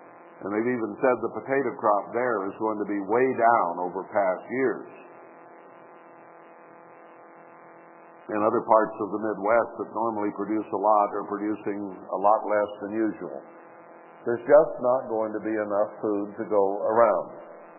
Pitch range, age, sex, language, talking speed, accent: 110-175 Hz, 60-79, male, English, 155 wpm, American